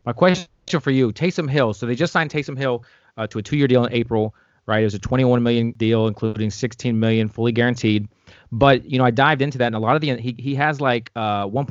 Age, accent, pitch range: 30-49, American, 110-135 Hz